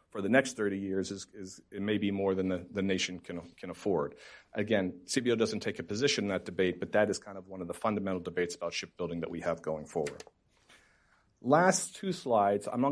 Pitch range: 100-120 Hz